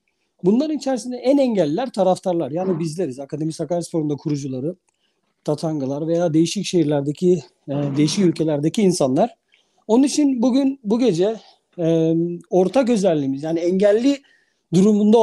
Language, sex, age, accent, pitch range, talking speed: Turkish, male, 50-69, native, 165-225 Hz, 120 wpm